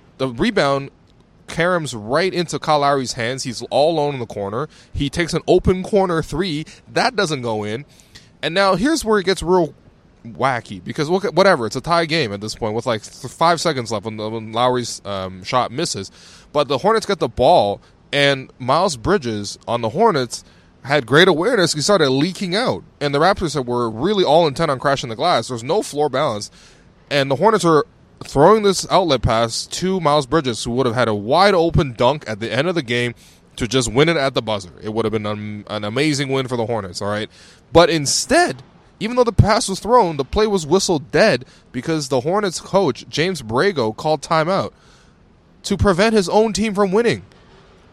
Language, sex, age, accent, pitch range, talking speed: English, male, 20-39, American, 115-180 Hz, 195 wpm